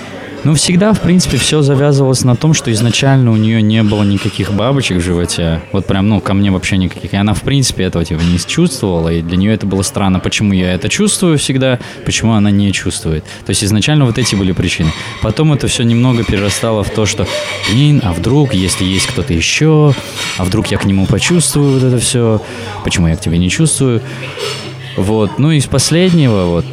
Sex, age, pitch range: male, 20-39, 95-130 Hz